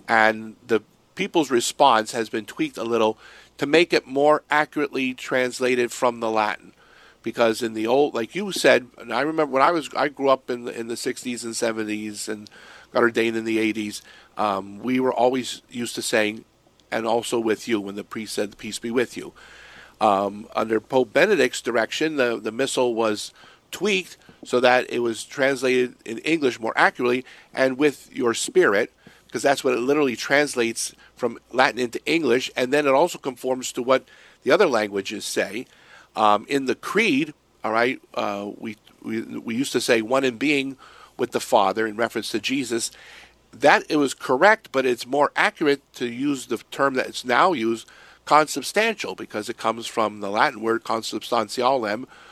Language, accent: English, American